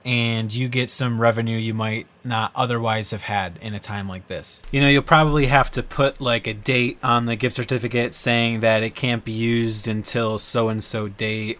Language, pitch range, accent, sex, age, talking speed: English, 110-130 Hz, American, male, 20-39, 210 wpm